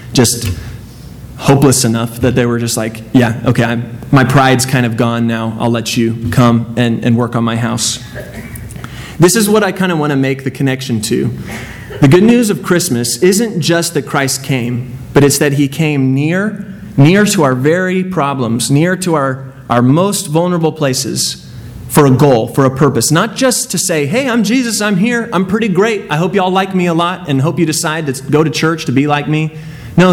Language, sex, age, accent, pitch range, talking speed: English, male, 30-49, American, 125-170 Hz, 210 wpm